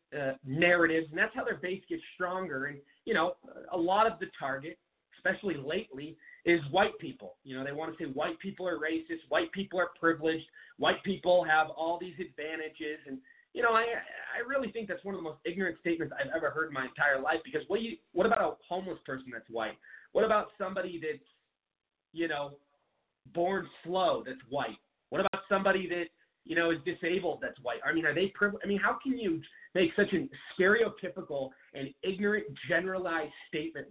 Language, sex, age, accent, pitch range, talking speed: English, male, 30-49, American, 160-195 Hz, 195 wpm